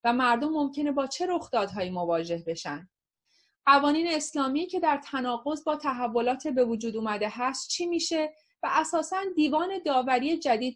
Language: Persian